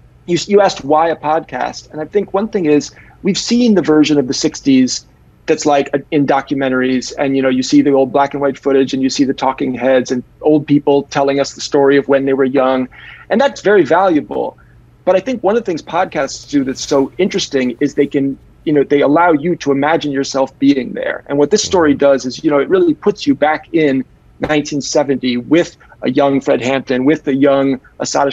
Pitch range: 135-160 Hz